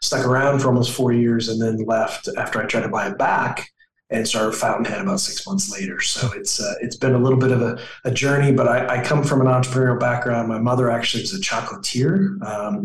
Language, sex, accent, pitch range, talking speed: English, male, American, 115-130 Hz, 235 wpm